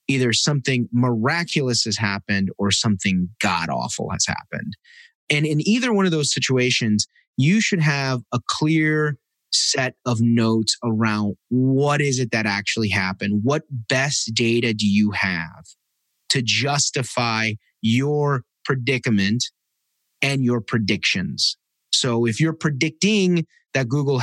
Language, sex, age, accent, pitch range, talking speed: English, male, 30-49, American, 110-150 Hz, 125 wpm